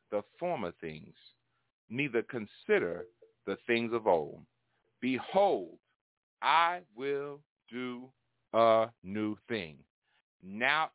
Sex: male